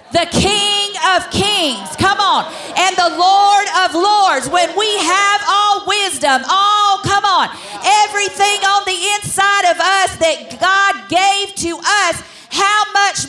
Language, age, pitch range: English, 50-69, 230-345 Hz